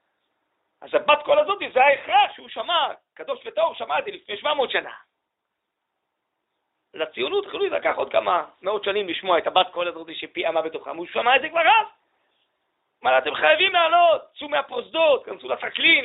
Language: Hebrew